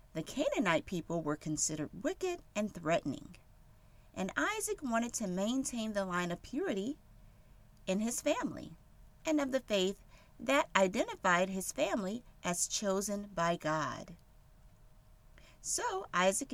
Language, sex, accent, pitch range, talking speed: English, female, American, 175-280 Hz, 125 wpm